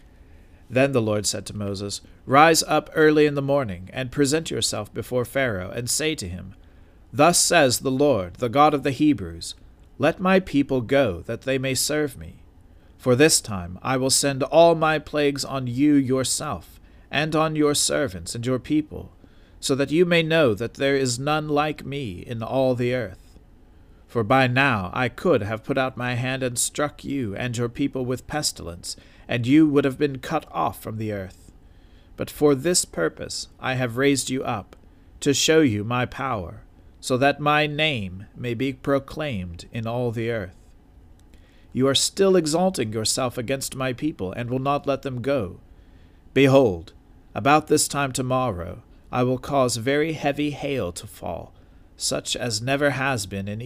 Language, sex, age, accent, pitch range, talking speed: English, male, 40-59, American, 95-140 Hz, 180 wpm